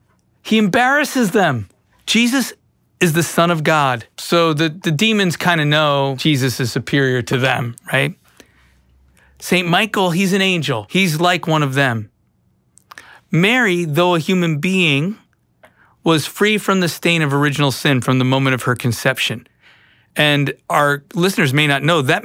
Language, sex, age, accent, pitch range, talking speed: English, male, 40-59, American, 135-180 Hz, 155 wpm